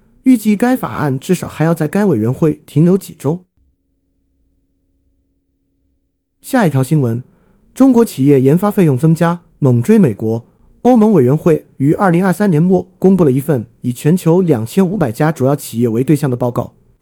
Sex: male